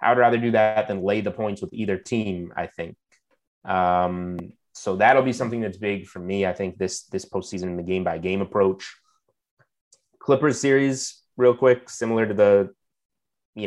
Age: 30-49